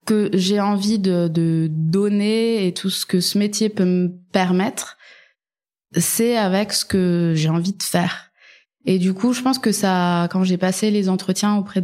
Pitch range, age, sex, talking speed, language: 175-205 Hz, 20-39, female, 180 wpm, French